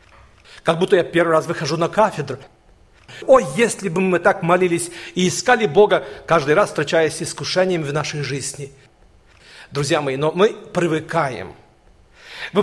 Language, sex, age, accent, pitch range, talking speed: Russian, male, 40-59, native, 170-220 Hz, 145 wpm